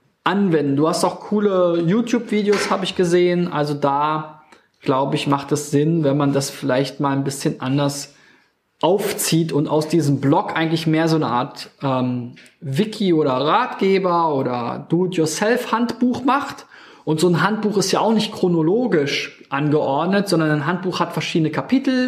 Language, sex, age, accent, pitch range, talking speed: German, male, 20-39, German, 145-185 Hz, 160 wpm